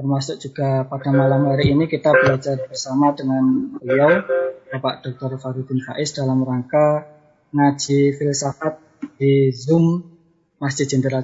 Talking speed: 125 wpm